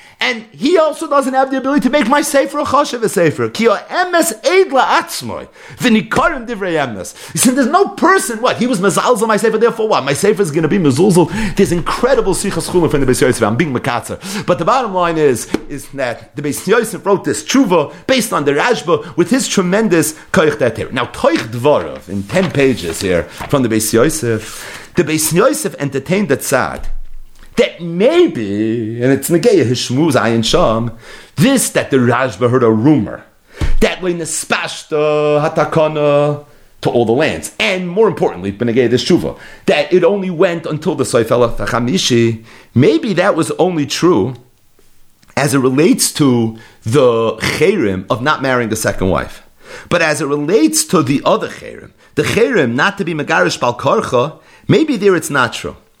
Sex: male